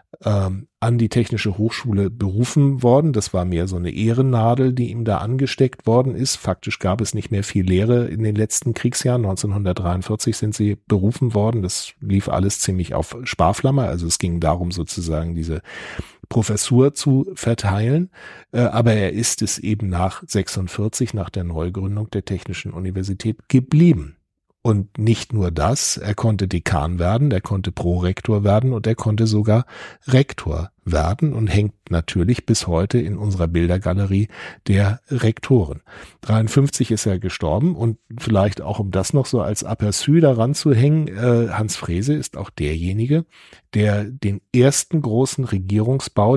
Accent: German